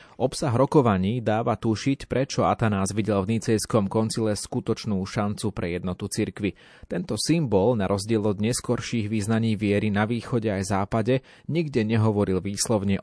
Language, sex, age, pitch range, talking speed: Slovak, male, 30-49, 100-115 Hz, 140 wpm